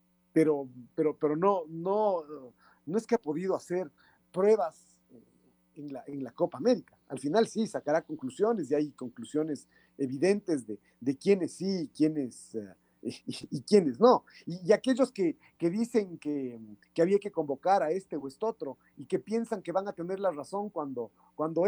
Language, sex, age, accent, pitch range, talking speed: Spanish, male, 40-59, Mexican, 150-220 Hz, 185 wpm